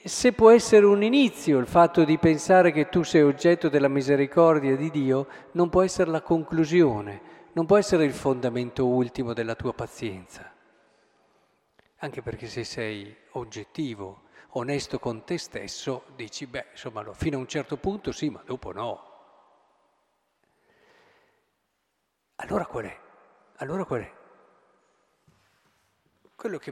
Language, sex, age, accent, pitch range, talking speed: Italian, male, 50-69, native, 125-175 Hz, 135 wpm